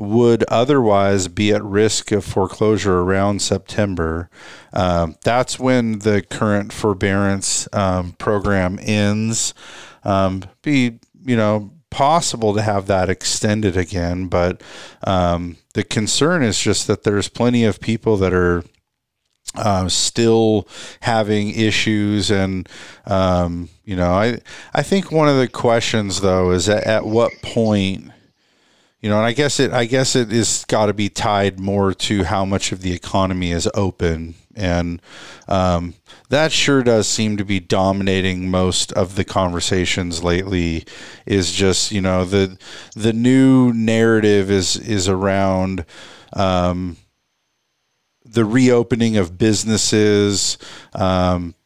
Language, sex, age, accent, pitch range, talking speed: English, male, 50-69, American, 95-110 Hz, 135 wpm